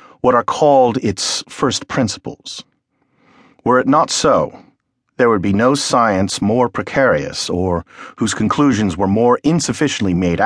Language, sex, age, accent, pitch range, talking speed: English, male, 50-69, American, 90-130 Hz, 140 wpm